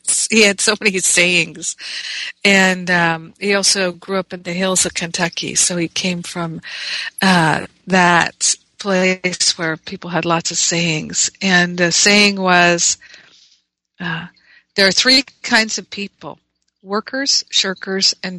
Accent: American